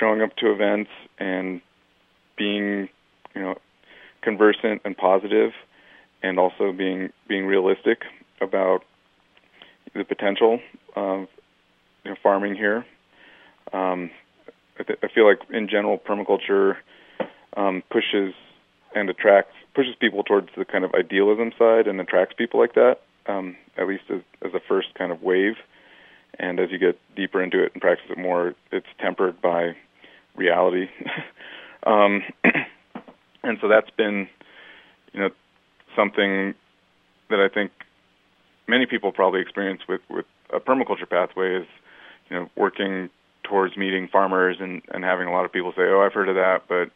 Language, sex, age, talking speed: English, male, 30-49, 145 wpm